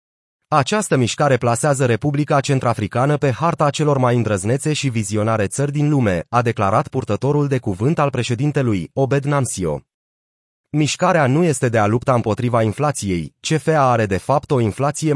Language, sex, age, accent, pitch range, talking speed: Romanian, male, 30-49, native, 115-150 Hz, 150 wpm